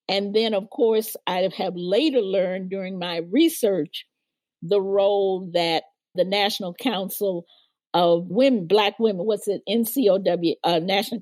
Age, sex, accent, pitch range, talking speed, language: 50-69, female, American, 175-230 Hz, 135 wpm, English